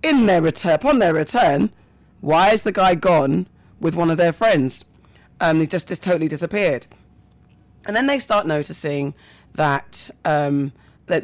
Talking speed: 165 wpm